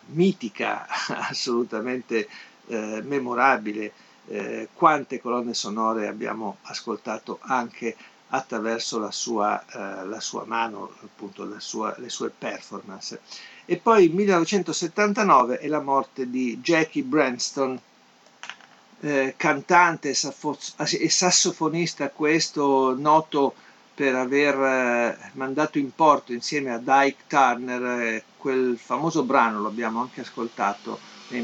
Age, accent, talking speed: 50-69, native, 100 wpm